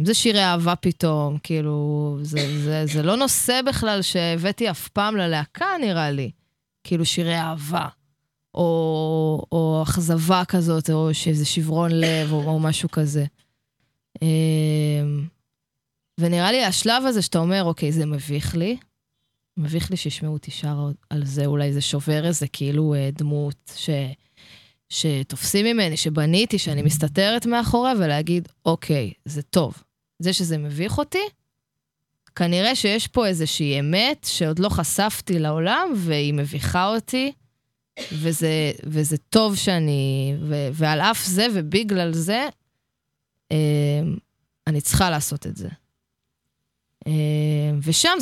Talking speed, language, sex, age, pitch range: 120 wpm, Hebrew, female, 20-39, 145-185 Hz